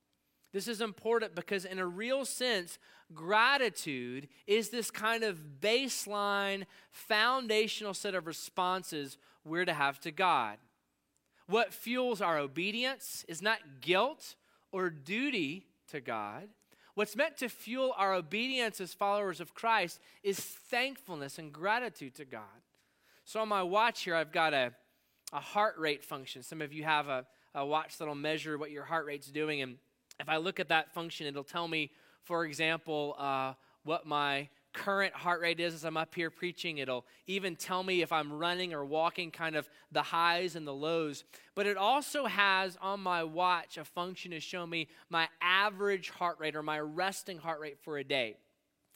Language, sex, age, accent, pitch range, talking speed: English, male, 20-39, American, 155-205 Hz, 170 wpm